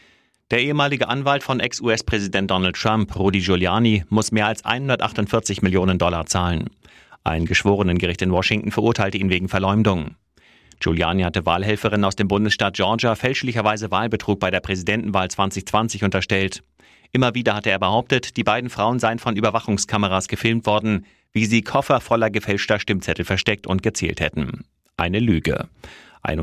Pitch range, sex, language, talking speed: 95-110 Hz, male, German, 150 wpm